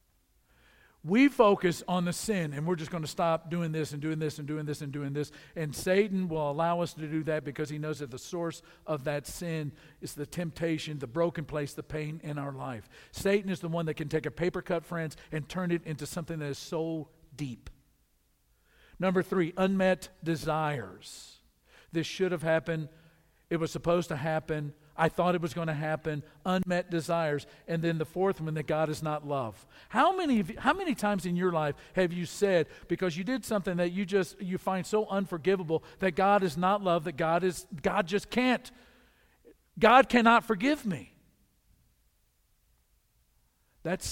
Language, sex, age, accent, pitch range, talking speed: English, male, 50-69, American, 140-180 Hz, 195 wpm